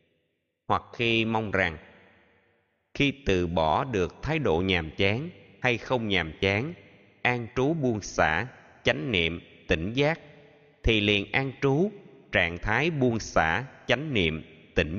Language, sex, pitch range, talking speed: Vietnamese, male, 95-120 Hz, 140 wpm